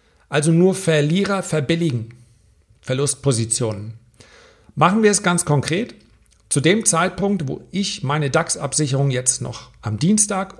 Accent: German